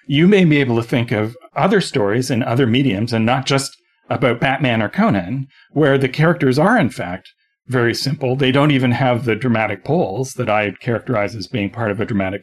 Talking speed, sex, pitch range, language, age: 210 wpm, male, 115-140 Hz, English, 40-59